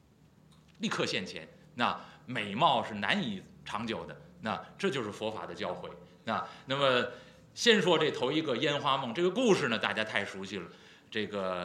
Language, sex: Chinese, male